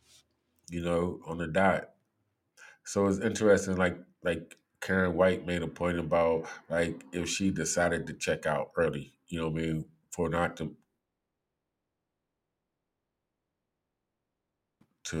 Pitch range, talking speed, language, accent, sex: 80-95 Hz, 125 wpm, English, American, male